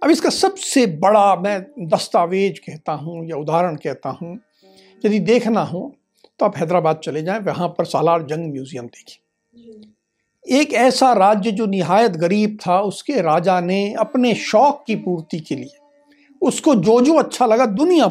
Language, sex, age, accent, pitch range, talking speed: Hindi, male, 60-79, native, 180-275 Hz, 160 wpm